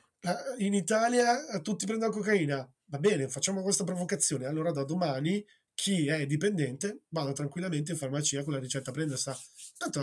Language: Italian